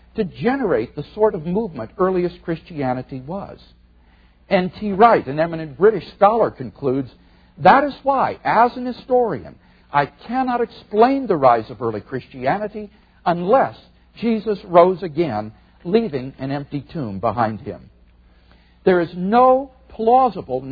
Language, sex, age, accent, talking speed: English, male, 60-79, American, 125 wpm